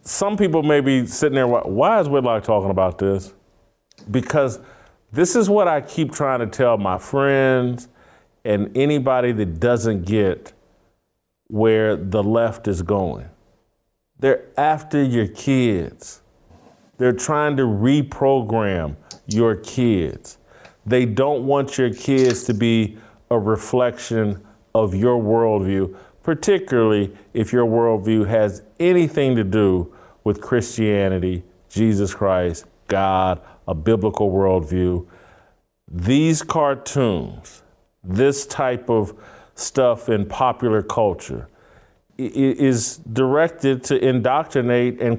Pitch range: 105-130 Hz